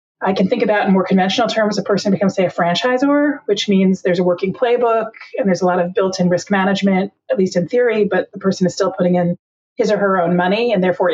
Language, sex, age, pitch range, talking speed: English, female, 30-49, 180-220 Hz, 250 wpm